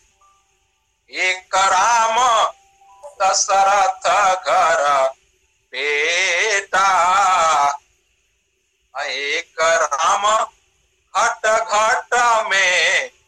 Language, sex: Hindi, male